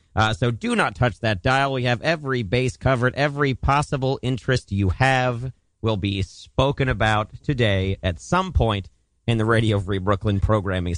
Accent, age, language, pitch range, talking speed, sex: American, 40-59, English, 95-135 Hz, 170 wpm, male